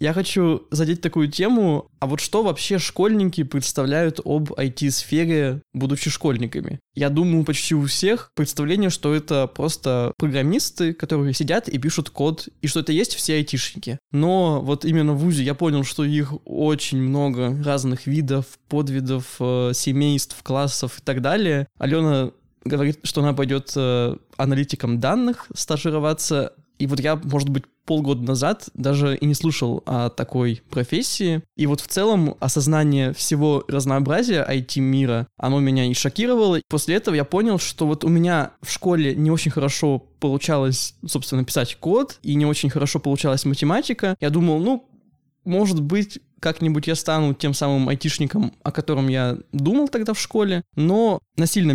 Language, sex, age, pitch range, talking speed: Russian, male, 20-39, 135-165 Hz, 155 wpm